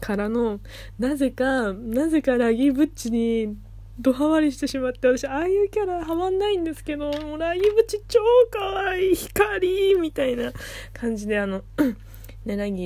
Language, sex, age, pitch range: Japanese, female, 20-39, 160-225 Hz